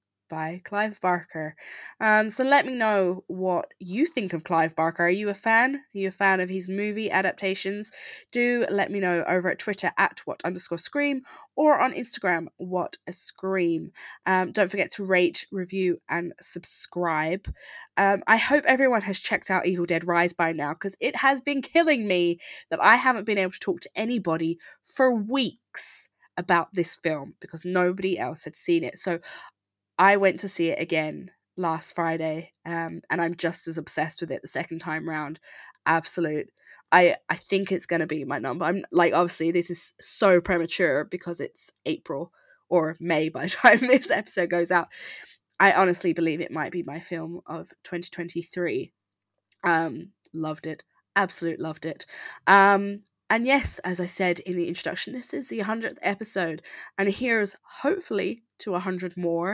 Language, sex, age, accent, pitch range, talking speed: English, female, 20-39, British, 170-205 Hz, 175 wpm